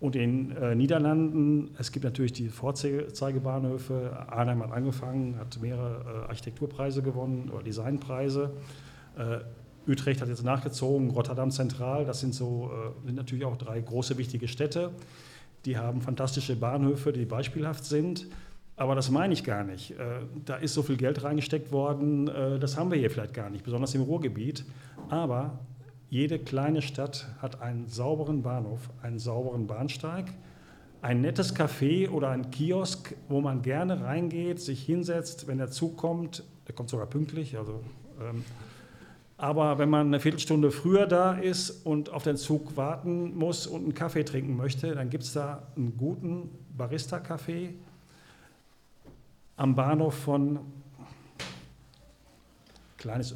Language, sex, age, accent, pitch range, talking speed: German, male, 40-59, German, 125-150 Hz, 145 wpm